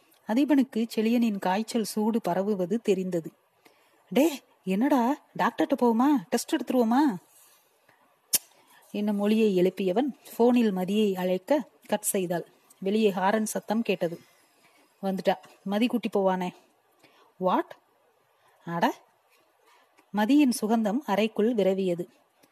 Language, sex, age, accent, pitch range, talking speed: Tamil, female, 30-49, native, 195-245 Hz, 90 wpm